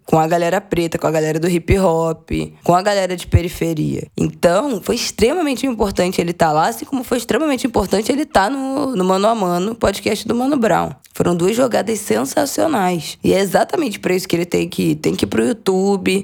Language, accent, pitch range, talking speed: Portuguese, Brazilian, 170-210 Hz, 220 wpm